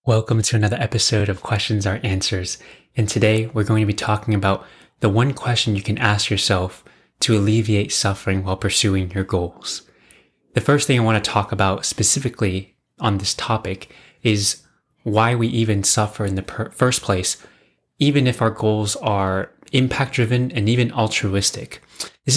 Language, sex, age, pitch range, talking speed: English, male, 20-39, 100-115 Hz, 165 wpm